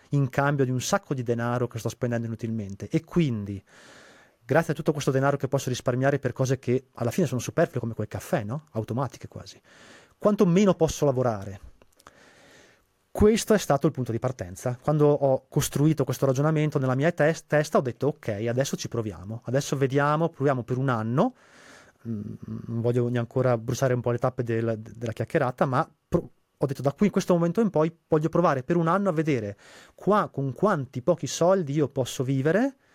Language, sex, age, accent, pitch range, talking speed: Italian, male, 30-49, native, 115-150 Hz, 190 wpm